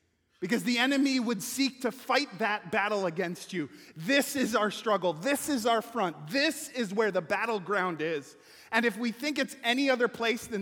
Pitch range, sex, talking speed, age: 120-195 Hz, male, 190 wpm, 30-49